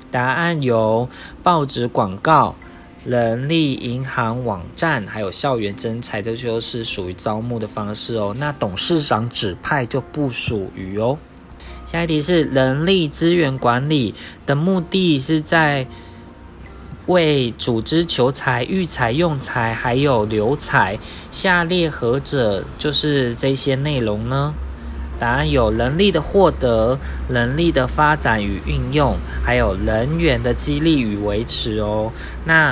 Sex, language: male, Chinese